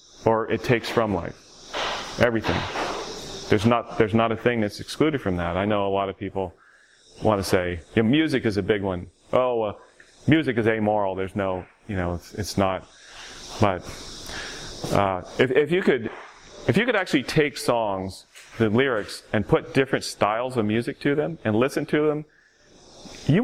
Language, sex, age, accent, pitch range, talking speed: English, male, 30-49, American, 95-120 Hz, 175 wpm